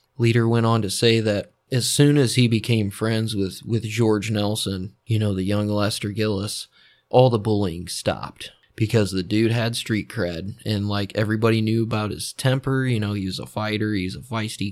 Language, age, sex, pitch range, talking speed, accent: English, 20-39, male, 100-115 Hz, 195 wpm, American